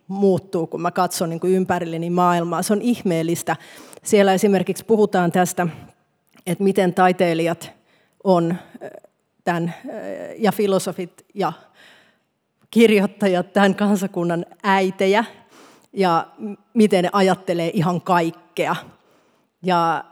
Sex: female